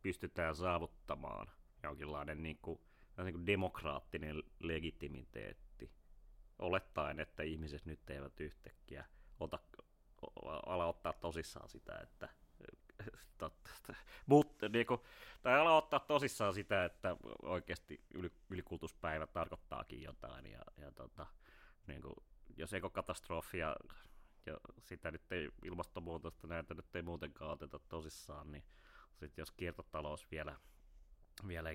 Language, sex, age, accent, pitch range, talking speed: Finnish, male, 30-49, native, 75-90 Hz, 115 wpm